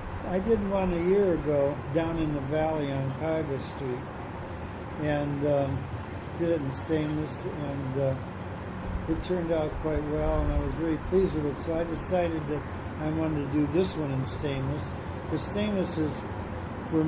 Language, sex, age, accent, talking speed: English, male, 60-79, American, 170 wpm